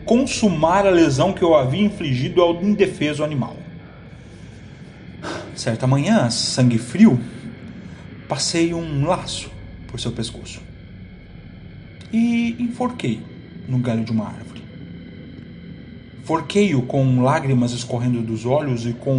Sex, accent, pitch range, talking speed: male, Brazilian, 125-205 Hz, 110 wpm